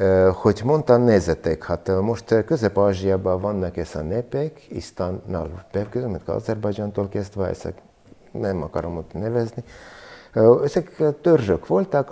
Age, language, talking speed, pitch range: 50-69, Hungarian, 115 wpm, 90-115 Hz